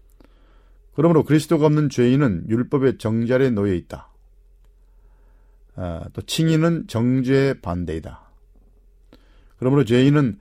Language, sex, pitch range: Korean, male, 100-135 Hz